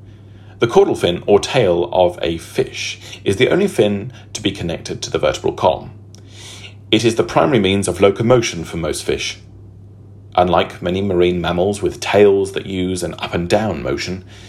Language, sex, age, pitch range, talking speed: English, male, 40-59, 100-105 Hz, 165 wpm